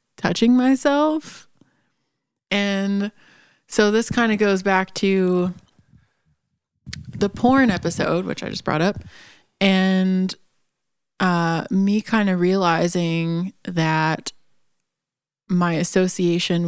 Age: 20-39